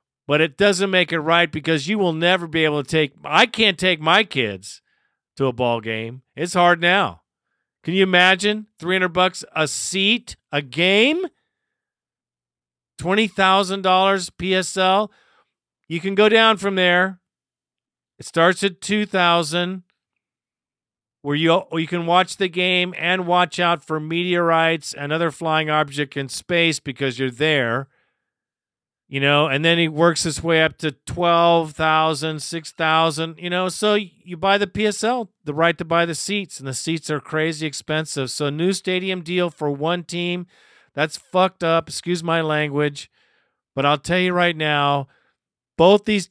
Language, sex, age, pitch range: English, male, 50-69, 150-185 Hz